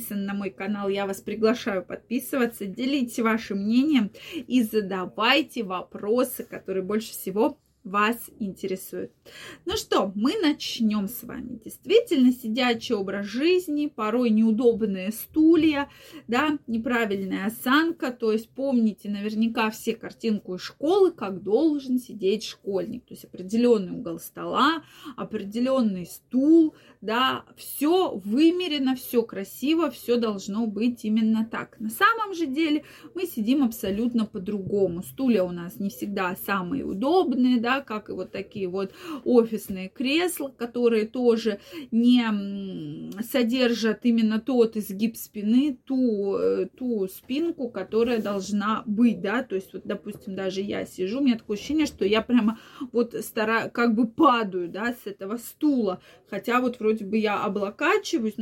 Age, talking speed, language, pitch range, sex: 20-39, 135 wpm, Russian, 210-260 Hz, female